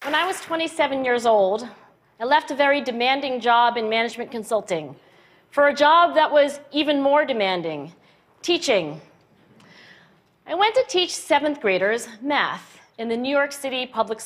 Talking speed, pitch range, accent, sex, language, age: 155 wpm, 215-310 Hz, American, female, English, 40-59